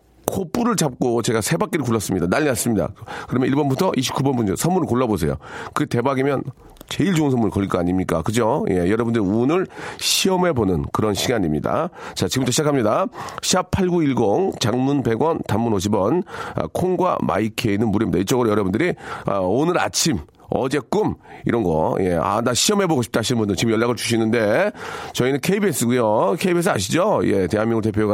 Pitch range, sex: 105-140 Hz, male